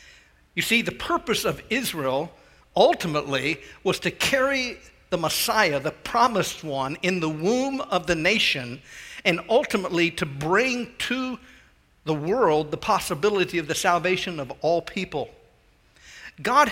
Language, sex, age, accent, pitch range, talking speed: English, male, 50-69, American, 160-220 Hz, 135 wpm